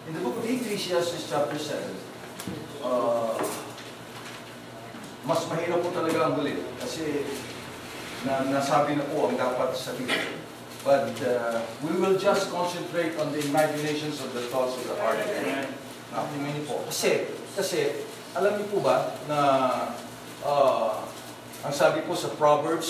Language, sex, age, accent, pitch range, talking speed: Filipino, male, 50-69, native, 145-185 Hz, 145 wpm